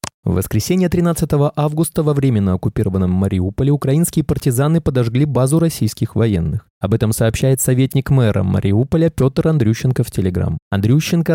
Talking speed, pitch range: 130 wpm, 105-150 Hz